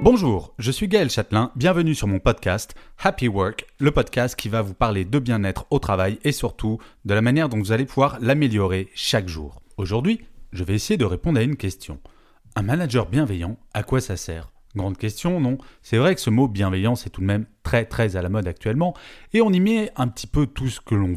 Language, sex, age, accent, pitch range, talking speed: French, male, 30-49, French, 100-150 Hz, 225 wpm